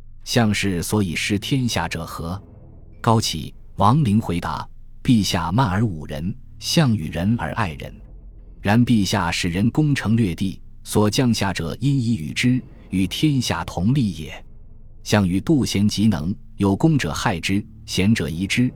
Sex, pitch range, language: male, 90-115 Hz, Chinese